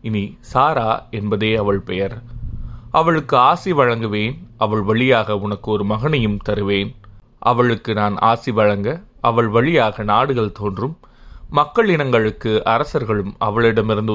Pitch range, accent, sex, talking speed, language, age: 105-120 Hz, native, male, 110 wpm, Tamil, 30-49